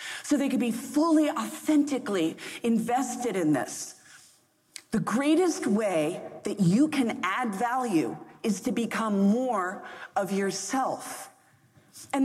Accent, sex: American, female